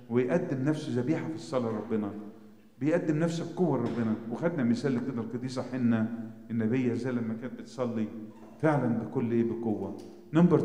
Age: 40-59